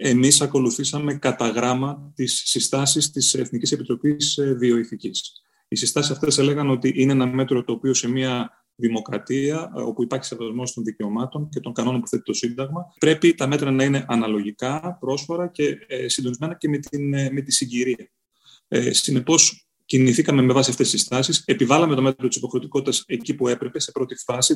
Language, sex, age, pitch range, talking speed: Greek, male, 30-49, 120-155 Hz, 175 wpm